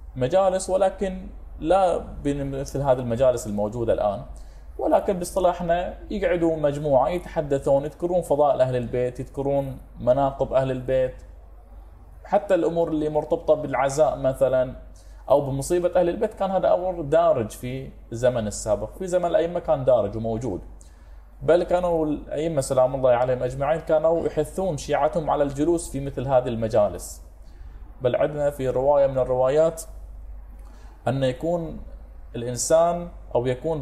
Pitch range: 115-165 Hz